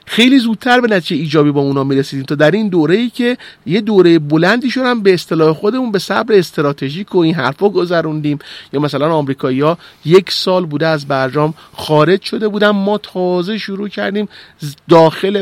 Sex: male